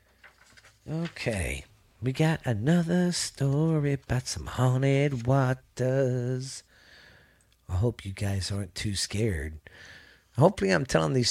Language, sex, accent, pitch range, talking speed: English, male, American, 105-140 Hz, 105 wpm